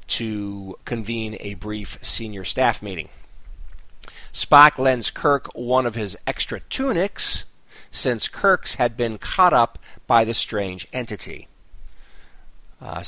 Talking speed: 120 wpm